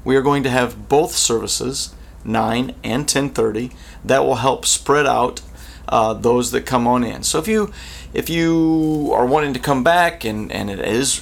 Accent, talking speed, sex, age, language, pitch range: American, 185 wpm, male, 30-49, English, 110-130 Hz